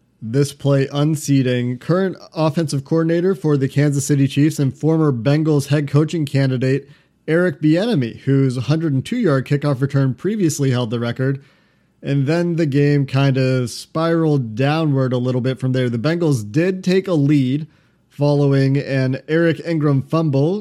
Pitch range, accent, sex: 135-155 Hz, American, male